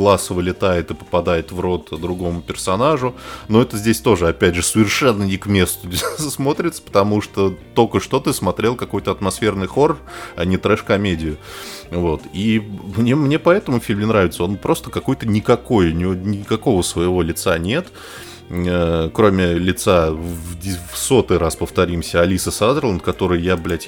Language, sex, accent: Russian, male, native